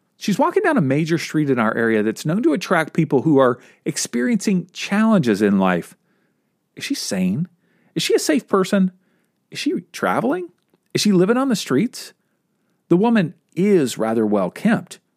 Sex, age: male, 40-59